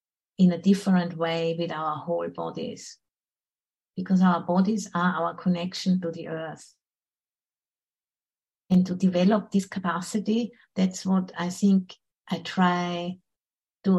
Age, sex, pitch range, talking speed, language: 50-69, female, 170-195 Hz, 125 wpm, English